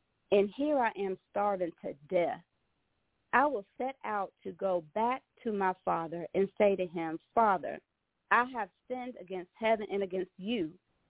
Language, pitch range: English, 185-255 Hz